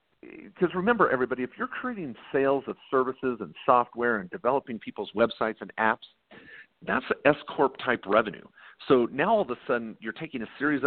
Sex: male